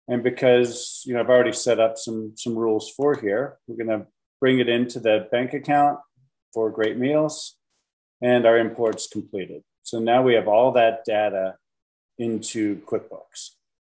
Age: 40-59